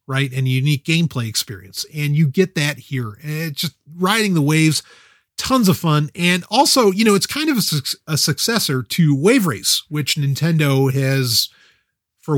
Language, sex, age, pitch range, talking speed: English, male, 30-49, 135-180 Hz, 175 wpm